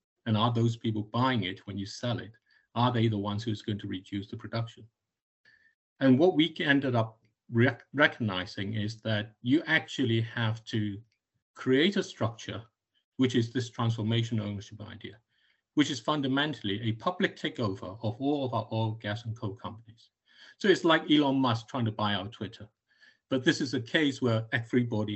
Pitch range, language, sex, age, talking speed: 110-135 Hz, English, male, 50-69, 175 wpm